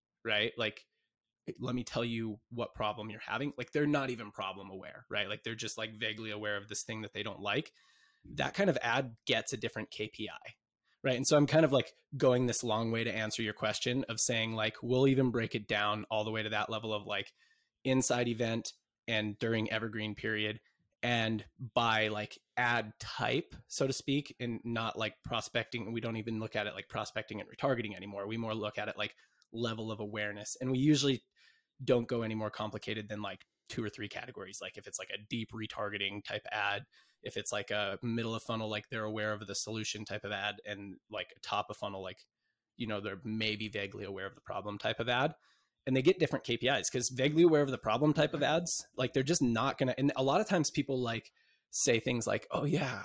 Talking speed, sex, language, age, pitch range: 220 wpm, male, English, 20-39, 110-130 Hz